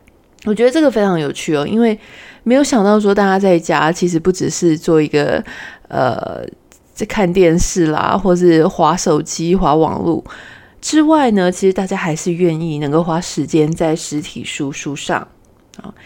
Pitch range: 160-205 Hz